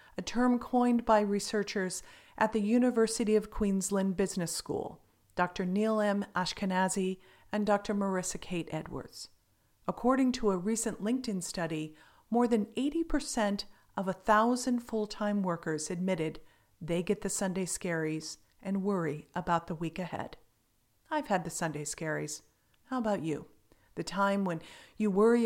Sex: female